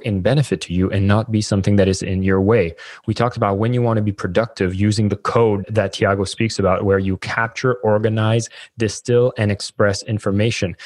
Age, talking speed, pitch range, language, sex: 20-39, 205 wpm, 100-120 Hz, English, male